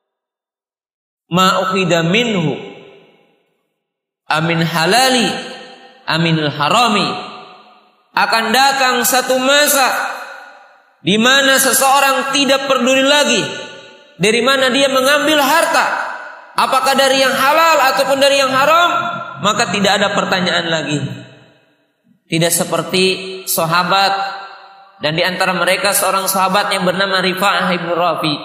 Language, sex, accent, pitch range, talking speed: Indonesian, male, native, 185-260 Hz, 100 wpm